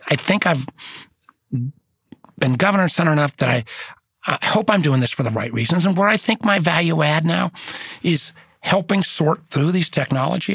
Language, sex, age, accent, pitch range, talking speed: English, male, 40-59, American, 135-165 Hz, 180 wpm